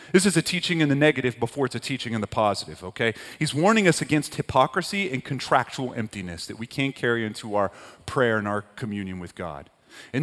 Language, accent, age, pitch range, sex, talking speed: English, American, 30-49, 120-170 Hz, male, 210 wpm